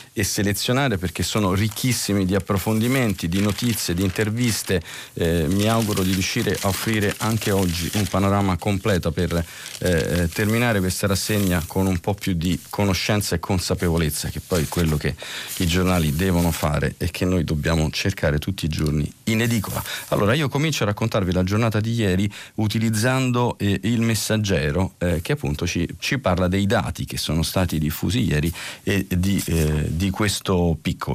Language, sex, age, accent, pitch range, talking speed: Italian, male, 40-59, native, 90-115 Hz, 170 wpm